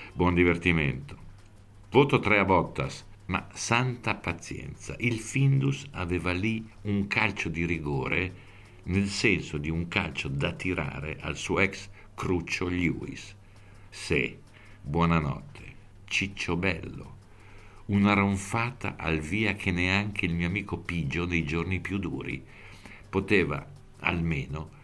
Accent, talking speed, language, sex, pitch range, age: native, 120 wpm, Italian, male, 80-100 Hz, 60-79